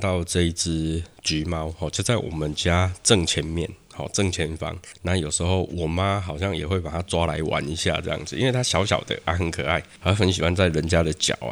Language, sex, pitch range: Chinese, male, 80-100 Hz